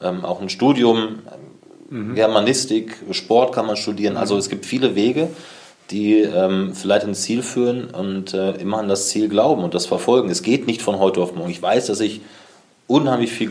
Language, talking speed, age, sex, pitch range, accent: German, 190 wpm, 30-49, male, 95-110 Hz, German